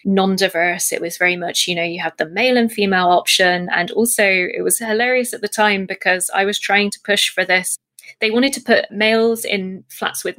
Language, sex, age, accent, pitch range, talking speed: English, female, 20-39, British, 195-270 Hz, 220 wpm